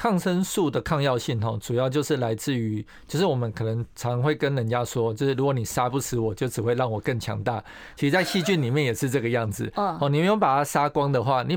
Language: Chinese